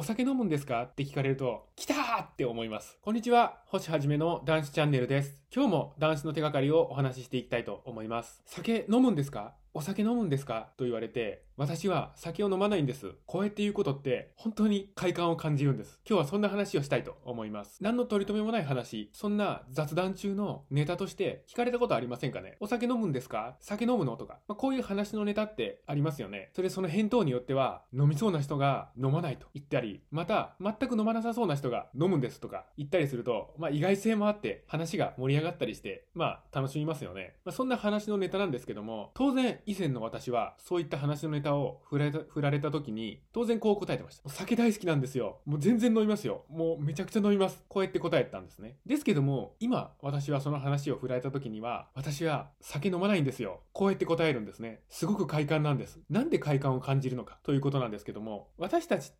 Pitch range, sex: 140-210 Hz, male